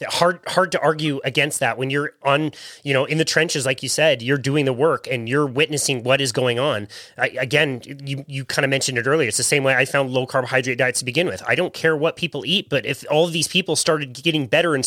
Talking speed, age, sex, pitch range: 260 wpm, 30-49, male, 140-180 Hz